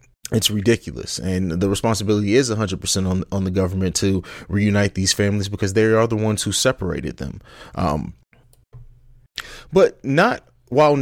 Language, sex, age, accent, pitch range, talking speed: English, male, 30-49, American, 95-120 Hz, 150 wpm